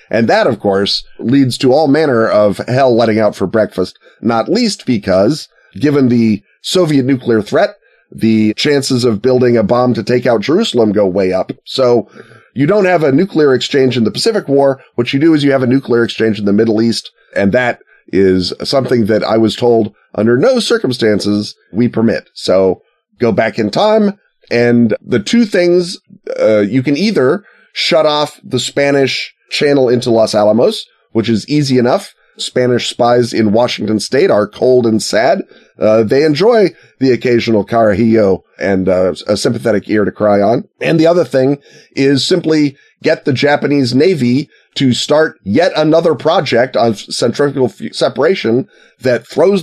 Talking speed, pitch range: 170 wpm, 110-140 Hz